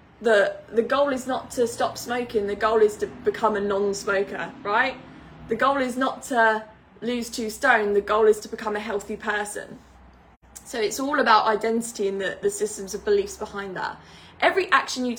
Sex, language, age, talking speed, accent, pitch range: female, English, 10-29, 190 wpm, British, 210-255 Hz